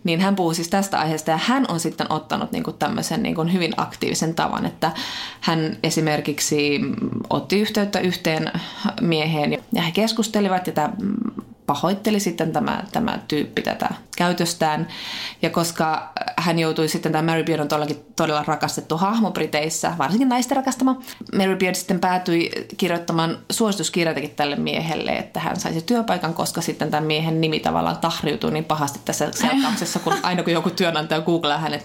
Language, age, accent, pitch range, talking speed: Finnish, 20-39, native, 155-195 Hz, 150 wpm